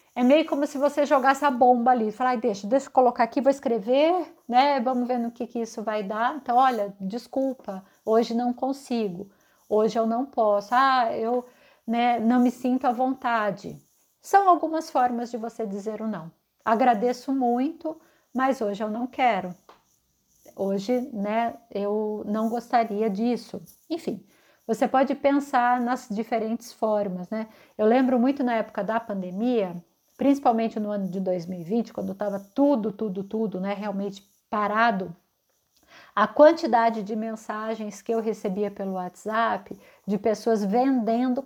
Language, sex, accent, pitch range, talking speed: Portuguese, female, Brazilian, 220-265 Hz, 155 wpm